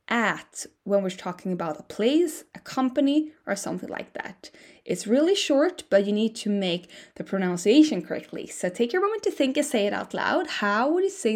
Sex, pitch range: female, 195-300 Hz